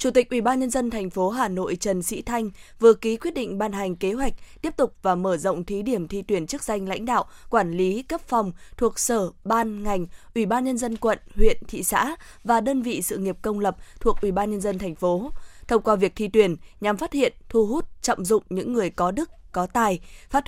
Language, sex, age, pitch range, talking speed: Vietnamese, female, 20-39, 190-250 Hz, 245 wpm